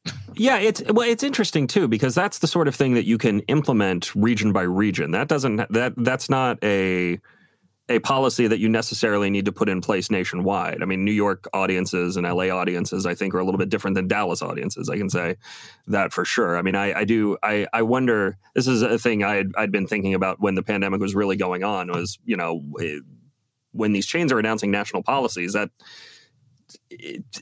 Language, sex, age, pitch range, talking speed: English, male, 30-49, 100-125 Hz, 210 wpm